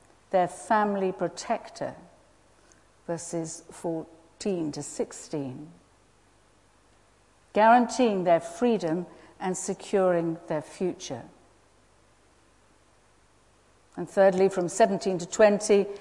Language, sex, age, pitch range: English, female, 50-69, 160-220 Hz